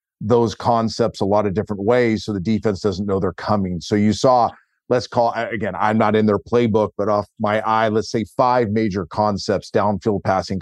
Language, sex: English, male